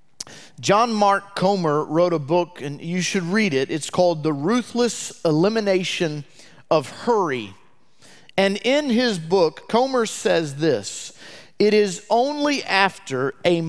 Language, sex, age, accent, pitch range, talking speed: English, male, 40-59, American, 170-235 Hz, 130 wpm